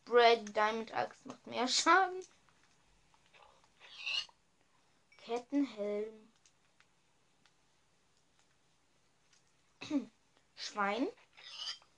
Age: 20-39